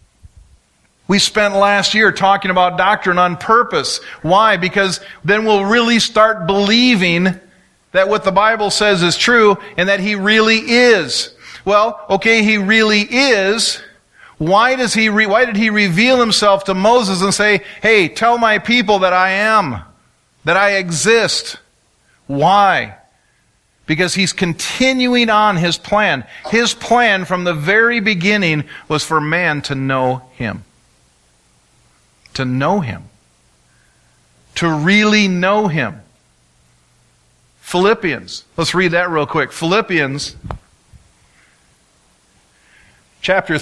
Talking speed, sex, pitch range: 125 wpm, male, 155-215 Hz